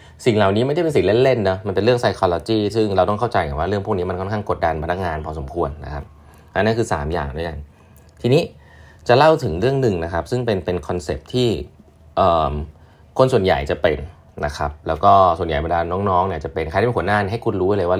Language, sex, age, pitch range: Thai, male, 20-39, 80-105 Hz